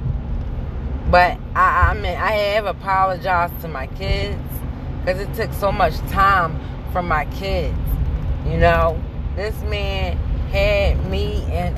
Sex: female